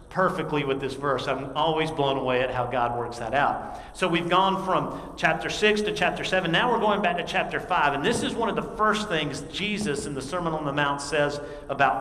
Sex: male